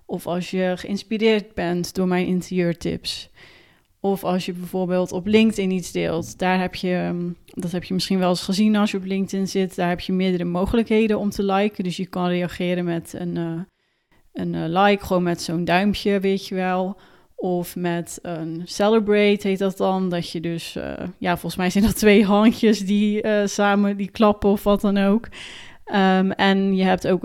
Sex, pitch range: female, 180-200 Hz